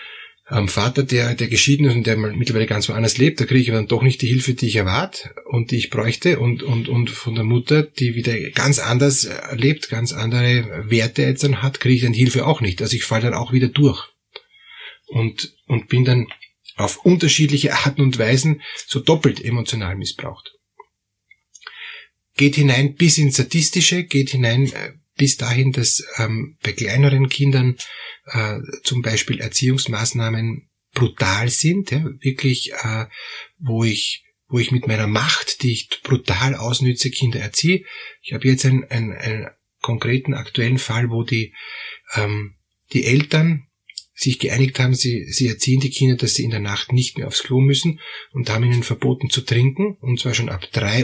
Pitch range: 115-140 Hz